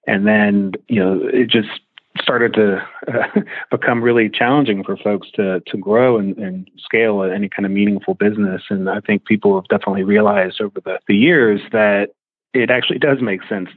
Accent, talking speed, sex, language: American, 185 wpm, male, English